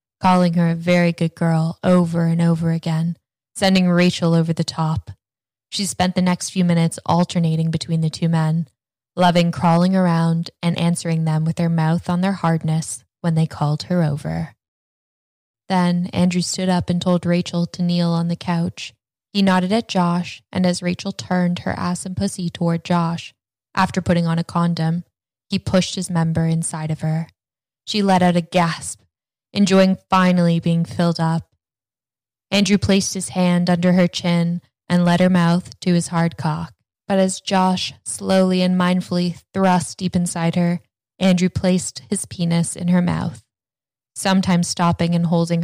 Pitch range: 160-180 Hz